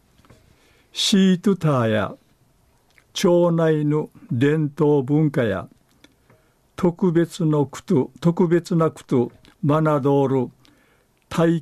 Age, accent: 50-69, native